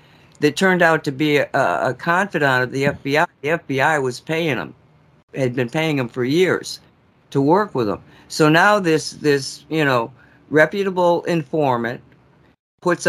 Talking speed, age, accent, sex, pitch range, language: 160 wpm, 50-69, American, female, 125-155 Hz, English